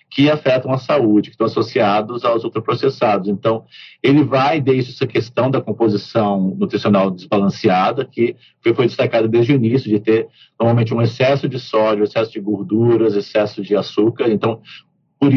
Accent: Brazilian